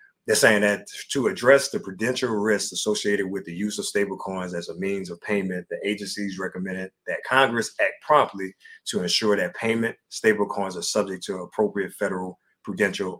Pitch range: 95-115 Hz